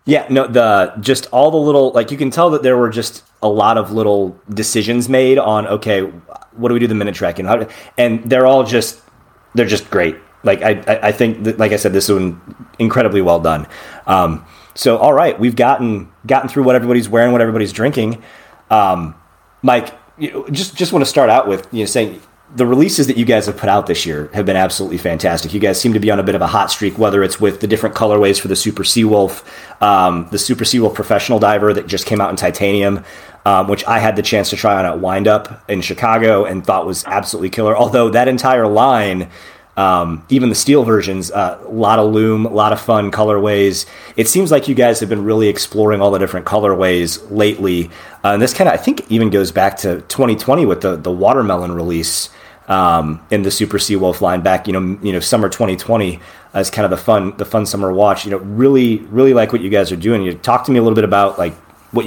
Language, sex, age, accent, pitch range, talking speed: English, male, 30-49, American, 95-120 Hz, 230 wpm